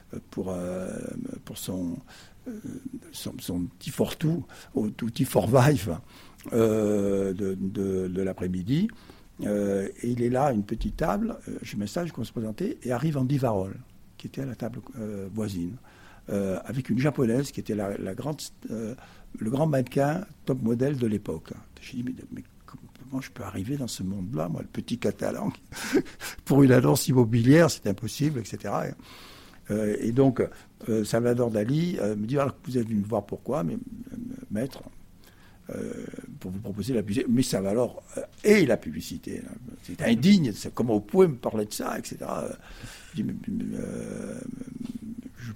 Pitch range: 100-145 Hz